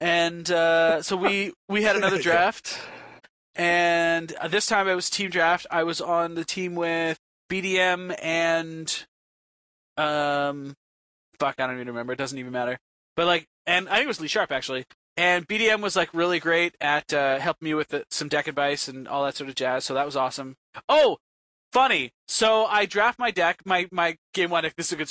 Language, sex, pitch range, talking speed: English, male, 155-190 Hz, 195 wpm